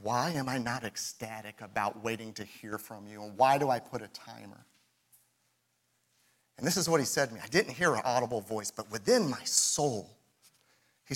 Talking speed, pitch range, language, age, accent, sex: 200 wpm, 100-125 Hz, English, 40-59, American, male